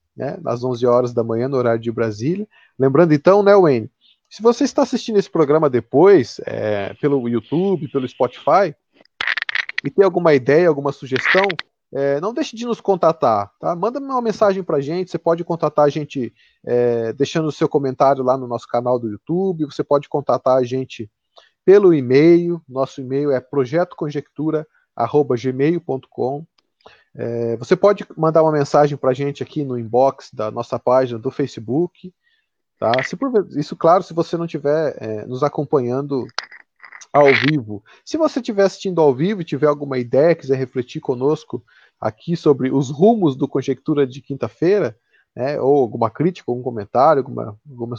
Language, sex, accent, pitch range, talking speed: Portuguese, male, Brazilian, 130-170 Hz, 155 wpm